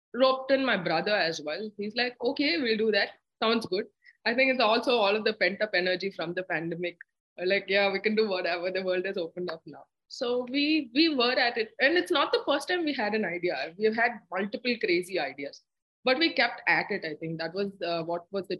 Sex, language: female, English